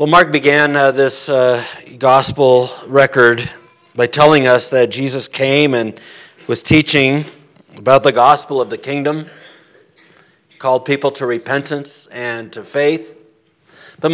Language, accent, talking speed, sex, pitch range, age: English, American, 130 wpm, male, 130-170 Hz, 50-69